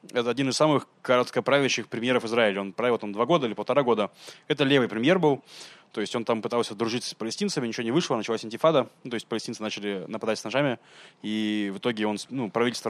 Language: Russian